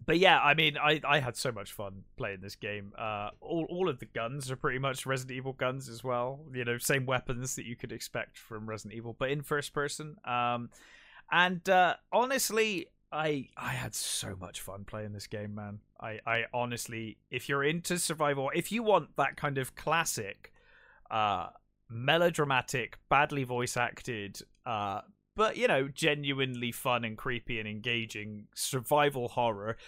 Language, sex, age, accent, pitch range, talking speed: English, male, 20-39, British, 115-145 Hz, 175 wpm